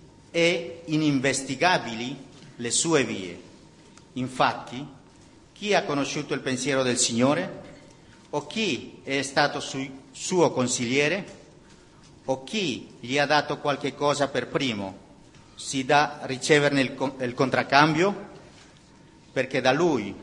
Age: 50-69